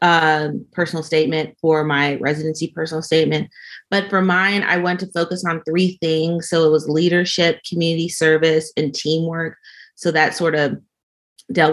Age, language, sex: 30-49, English, female